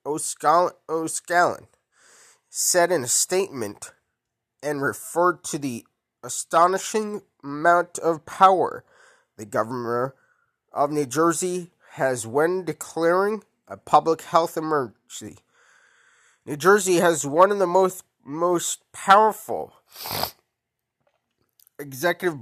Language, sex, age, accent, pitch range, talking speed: English, male, 20-39, American, 140-185 Hz, 95 wpm